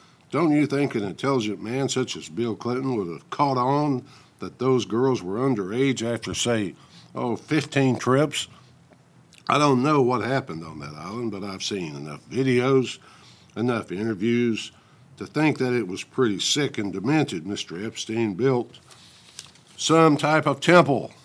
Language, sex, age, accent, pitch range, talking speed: English, male, 60-79, American, 110-140 Hz, 155 wpm